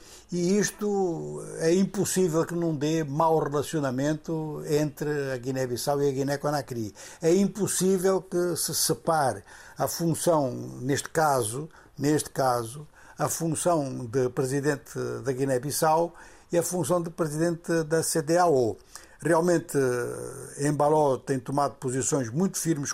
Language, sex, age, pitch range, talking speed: Portuguese, male, 60-79, 135-180 Hz, 120 wpm